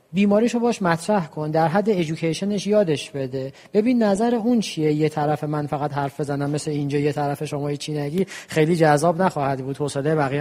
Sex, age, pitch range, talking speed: male, 40-59, 145-205 Hz, 185 wpm